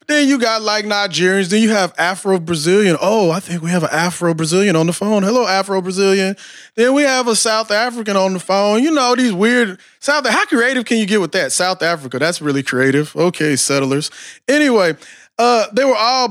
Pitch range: 180-225 Hz